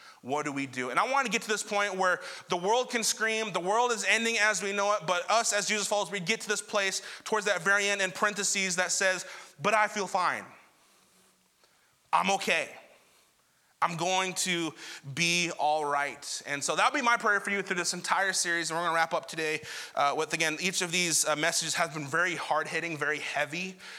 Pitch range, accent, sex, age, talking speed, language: 135-175 Hz, American, male, 20-39, 220 wpm, English